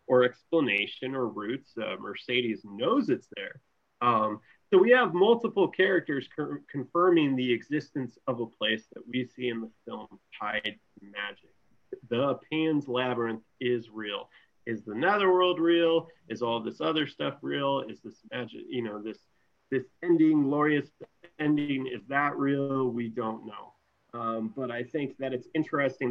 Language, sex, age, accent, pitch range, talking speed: English, male, 30-49, American, 120-155 Hz, 160 wpm